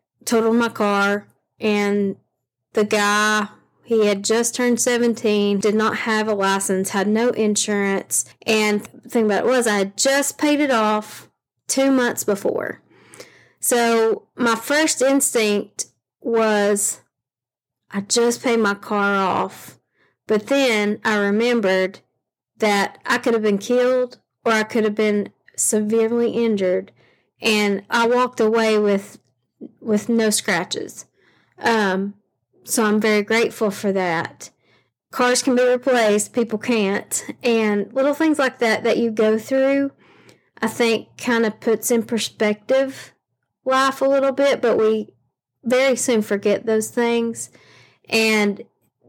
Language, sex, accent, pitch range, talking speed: English, female, American, 205-240 Hz, 135 wpm